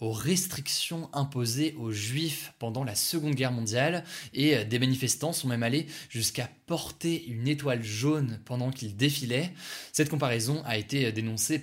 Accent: French